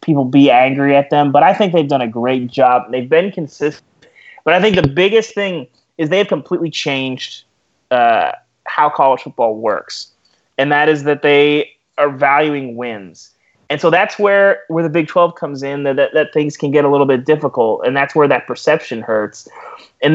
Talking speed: 200 wpm